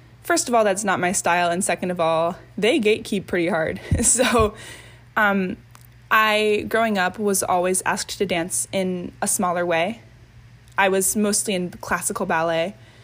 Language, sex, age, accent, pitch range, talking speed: English, female, 10-29, American, 125-195 Hz, 160 wpm